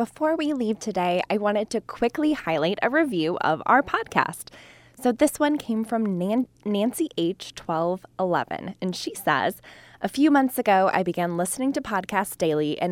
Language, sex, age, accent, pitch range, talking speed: English, female, 20-39, American, 175-230 Hz, 165 wpm